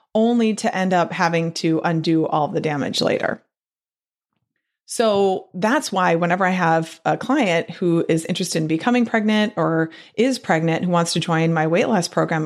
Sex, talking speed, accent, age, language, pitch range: female, 175 wpm, American, 30-49, English, 170-245 Hz